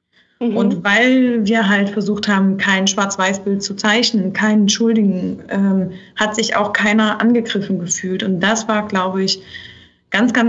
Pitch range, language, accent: 195-225 Hz, German, German